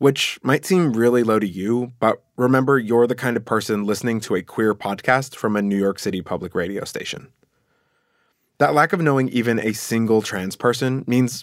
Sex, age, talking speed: male, 20-39, 195 wpm